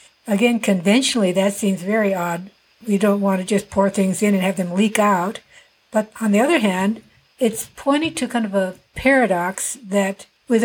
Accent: American